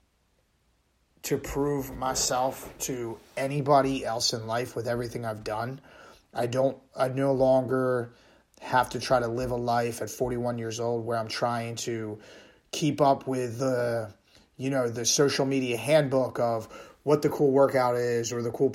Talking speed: 165 wpm